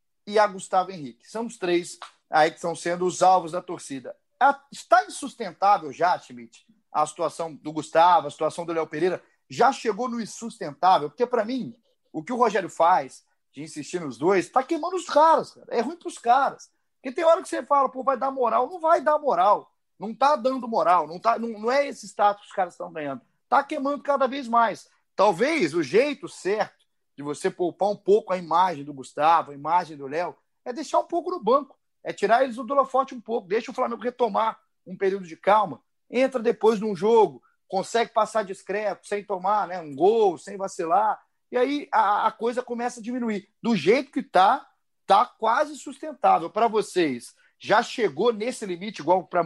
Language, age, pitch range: Portuguese, 30-49, 175-270 Hz